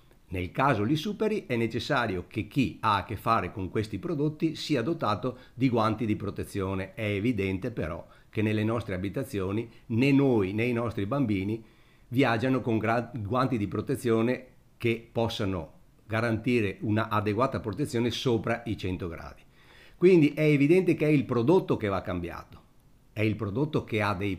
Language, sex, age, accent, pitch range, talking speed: Italian, male, 50-69, native, 100-135 Hz, 160 wpm